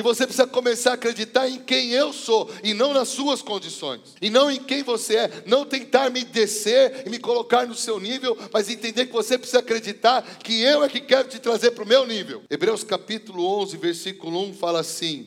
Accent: Brazilian